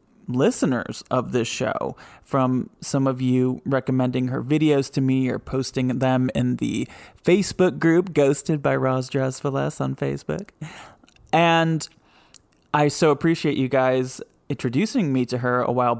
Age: 20-39